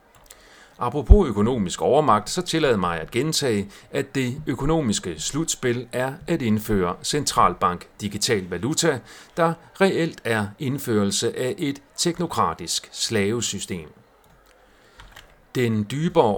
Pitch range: 105-145 Hz